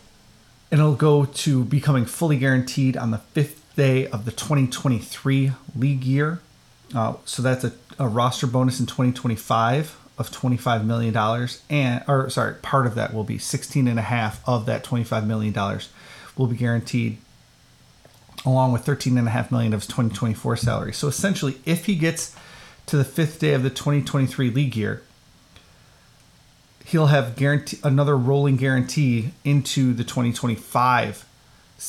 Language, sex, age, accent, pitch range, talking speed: English, male, 30-49, American, 120-140 Hz, 155 wpm